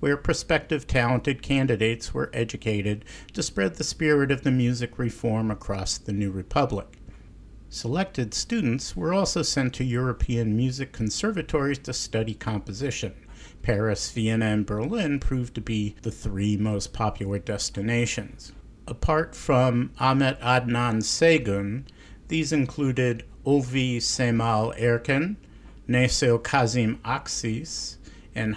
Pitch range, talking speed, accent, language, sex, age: 105-135 Hz, 120 wpm, American, English, male, 50-69